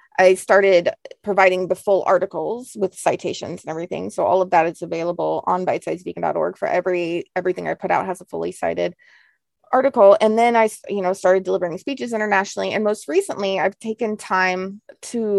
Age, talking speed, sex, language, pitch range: 20-39, 175 wpm, female, English, 180-215 Hz